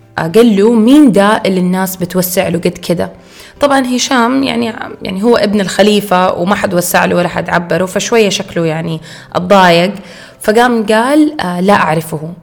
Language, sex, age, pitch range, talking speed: Arabic, female, 20-39, 170-210 Hz, 160 wpm